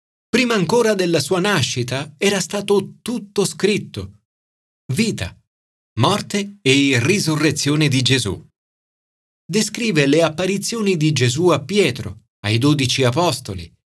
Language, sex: Italian, male